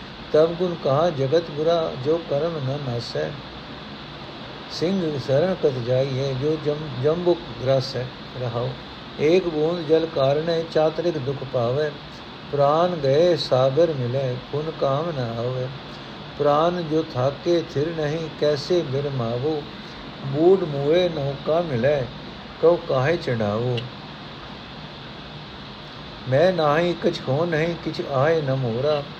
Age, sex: 60-79, male